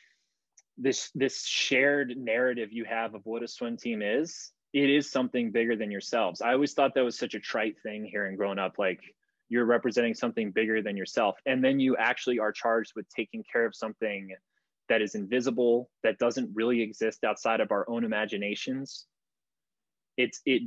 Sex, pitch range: male, 110-130 Hz